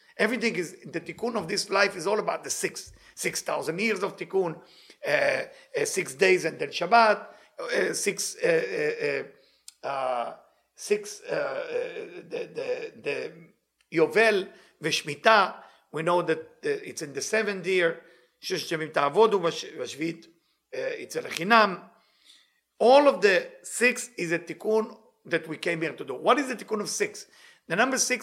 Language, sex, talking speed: English, male, 155 wpm